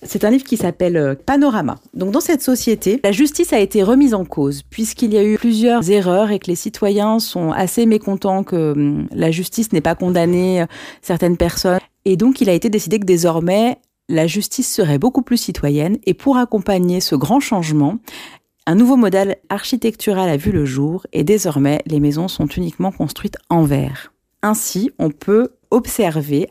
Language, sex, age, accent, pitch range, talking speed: French, female, 40-59, French, 155-215 Hz, 180 wpm